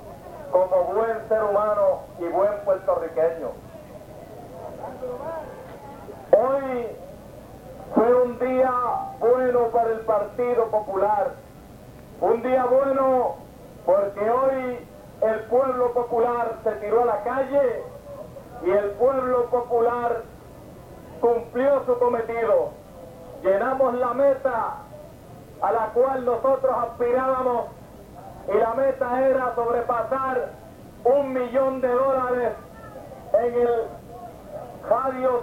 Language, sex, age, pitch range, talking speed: Spanish, male, 50-69, 235-265 Hz, 95 wpm